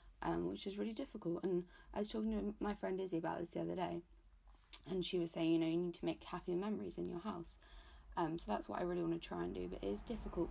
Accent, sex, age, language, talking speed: British, female, 20-39, English, 275 wpm